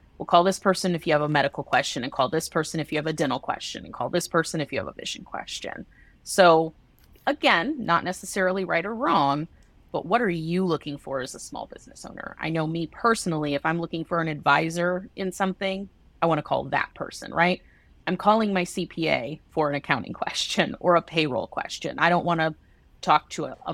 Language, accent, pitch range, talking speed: English, American, 150-185 Hz, 220 wpm